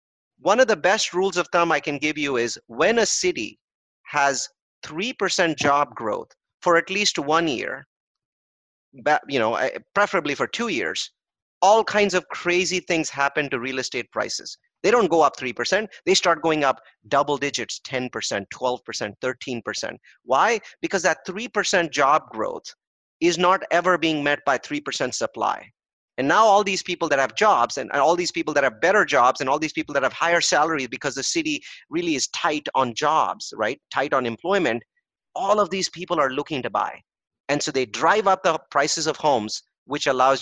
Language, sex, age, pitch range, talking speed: English, male, 30-49, 135-180 Hz, 185 wpm